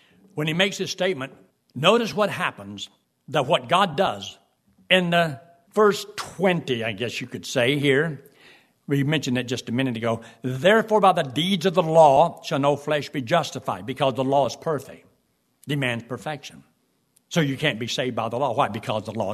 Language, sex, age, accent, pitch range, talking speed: English, male, 60-79, American, 130-170 Hz, 185 wpm